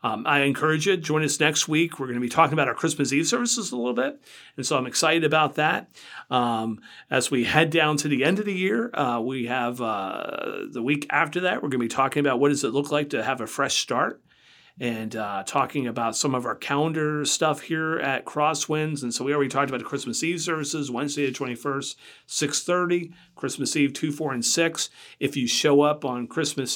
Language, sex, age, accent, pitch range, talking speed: English, male, 40-59, American, 125-155 Hz, 225 wpm